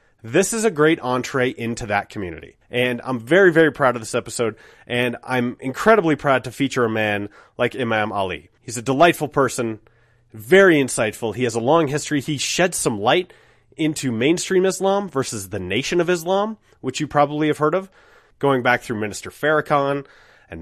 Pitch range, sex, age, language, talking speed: 120-170 Hz, male, 30-49, English, 180 wpm